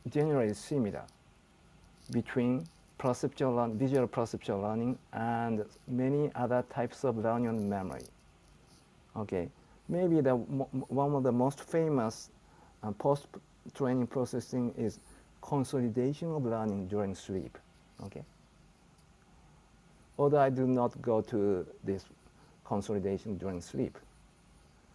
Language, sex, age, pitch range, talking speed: English, male, 50-69, 115-145 Hz, 105 wpm